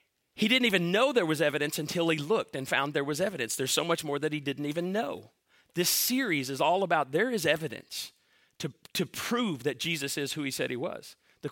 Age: 40-59